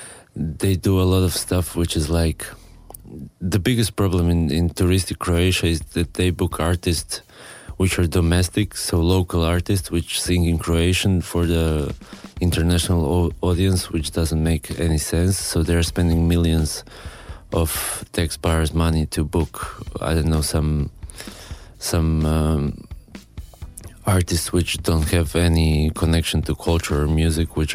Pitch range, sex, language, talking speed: 80-95 Hz, male, French, 140 wpm